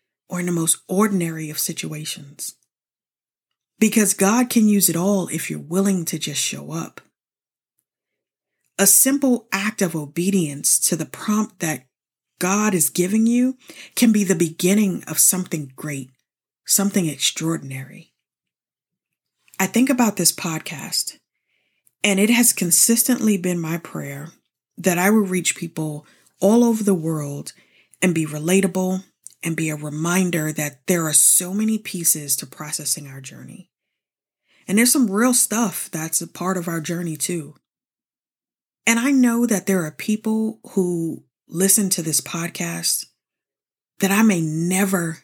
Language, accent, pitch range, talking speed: English, American, 155-205 Hz, 145 wpm